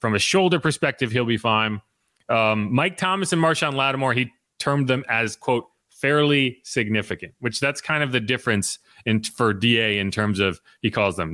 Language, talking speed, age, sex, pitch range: English, 185 wpm, 30-49, male, 110-145 Hz